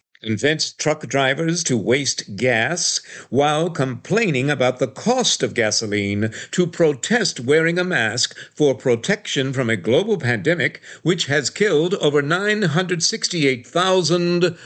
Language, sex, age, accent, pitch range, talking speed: English, male, 60-79, American, 95-145 Hz, 120 wpm